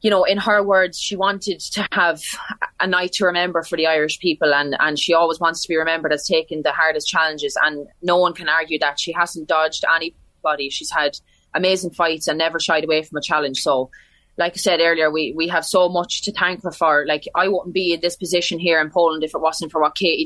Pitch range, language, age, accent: 155-185 Hz, English, 20-39, Irish